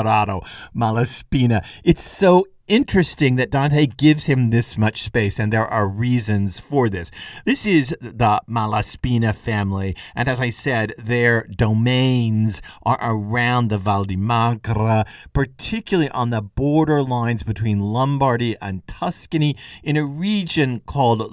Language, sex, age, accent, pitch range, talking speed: English, male, 50-69, American, 105-140 Hz, 135 wpm